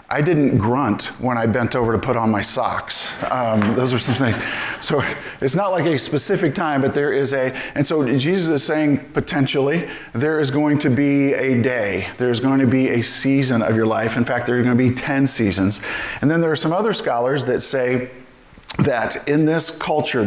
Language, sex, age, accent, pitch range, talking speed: English, male, 40-59, American, 115-145 Hz, 210 wpm